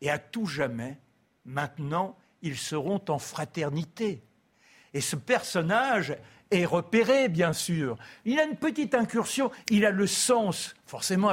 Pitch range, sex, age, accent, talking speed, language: 165-235 Hz, male, 60-79, French, 140 wpm, French